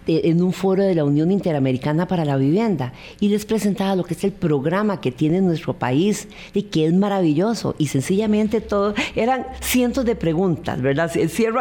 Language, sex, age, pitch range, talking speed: Spanish, female, 50-69, 155-205 Hz, 180 wpm